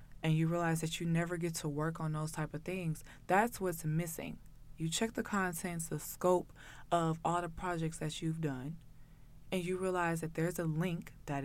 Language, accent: English, American